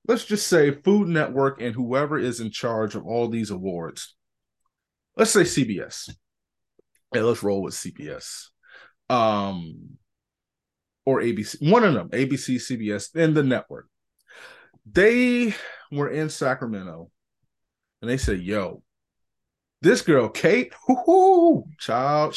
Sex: male